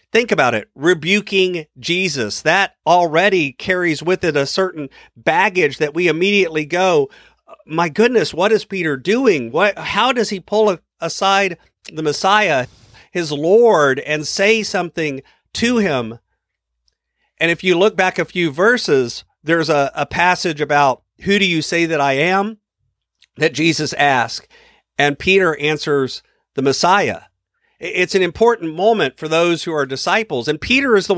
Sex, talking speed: male, 155 wpm